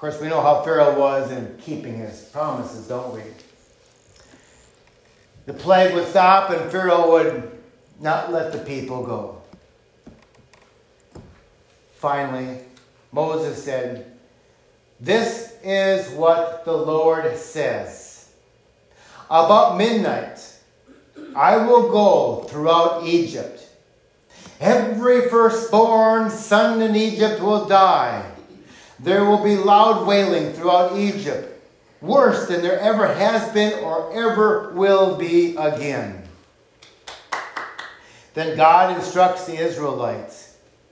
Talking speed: 105 wpm